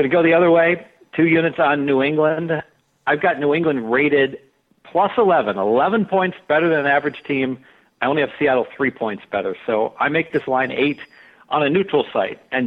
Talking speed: 205 wpm